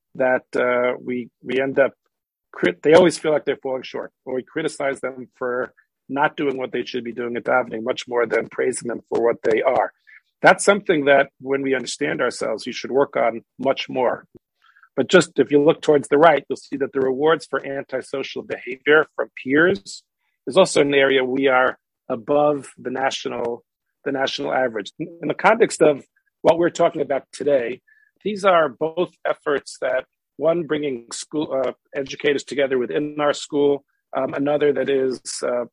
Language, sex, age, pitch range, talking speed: English, male, 50-69, 125-150 Hz, 180 wpm